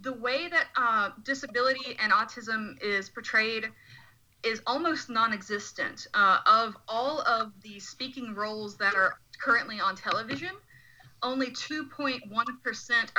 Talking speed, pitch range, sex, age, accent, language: 120 wpm, 195-255 Hz, female, 30-49, American, English